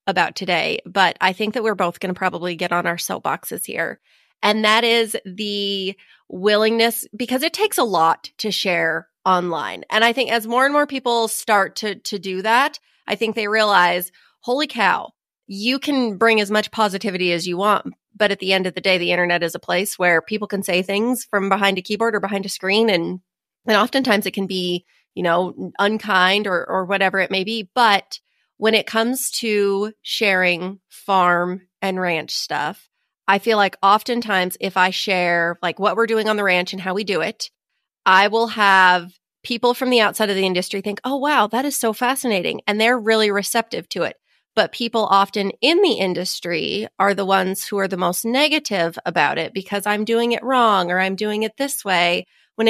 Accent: American